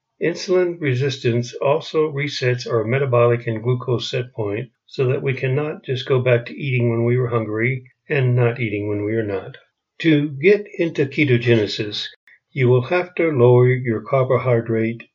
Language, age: English, 60-79